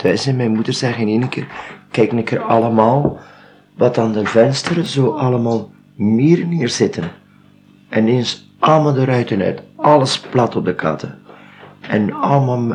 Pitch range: 95-120 Hz